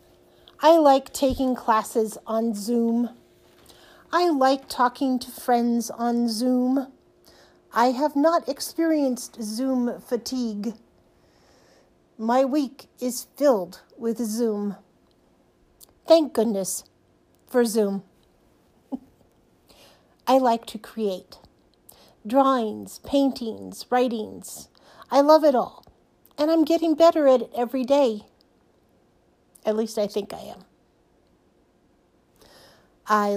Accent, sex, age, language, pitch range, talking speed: American, female, 50-69, English, 215-270 Hz, 100 wpm